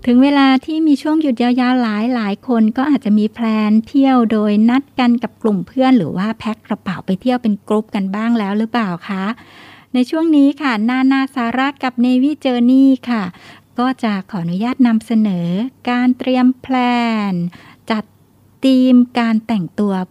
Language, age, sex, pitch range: Thai, 60-79, female, 195-245 Hz